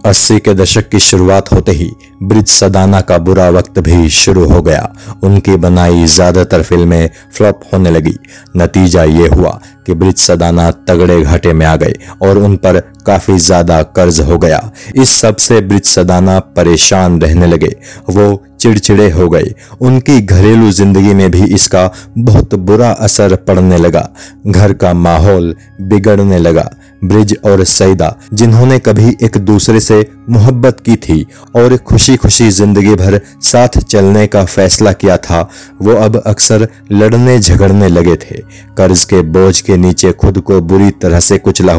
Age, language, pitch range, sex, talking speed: 30-49, Hindi, 90-105 Hz, male, 155 wpm